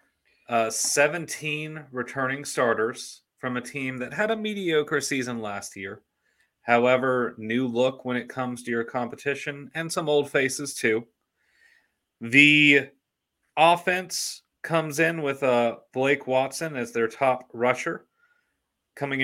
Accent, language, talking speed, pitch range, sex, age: American, English, 130 wpm, 115-145 Hz, male, 30-49